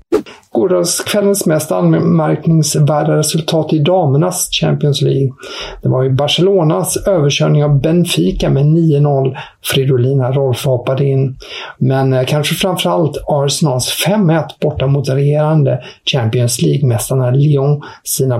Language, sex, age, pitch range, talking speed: English, male, 50-69, 130-160 Hz, 105 wpm